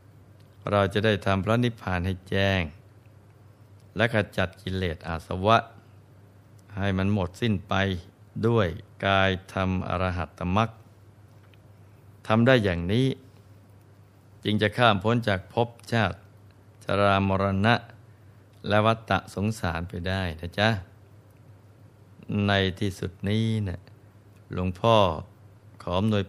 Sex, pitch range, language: male, 100-110 Hz, Thai